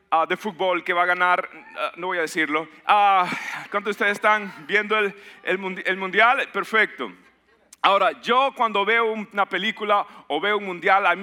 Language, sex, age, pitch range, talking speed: Spanish, male, 40-59, 195-245 Hz, 190 wpm